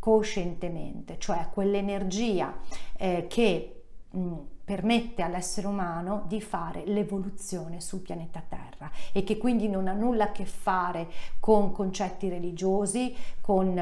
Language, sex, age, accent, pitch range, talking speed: Italian, female, 40-59, native, 175-210 Hz, 115 wpm